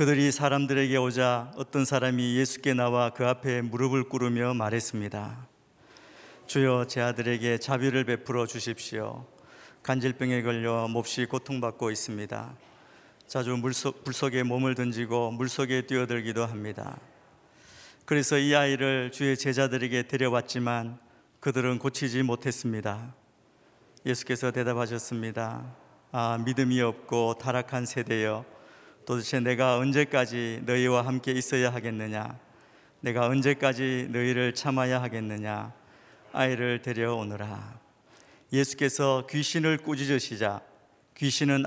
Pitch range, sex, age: 120-135 Hz, male, 50-69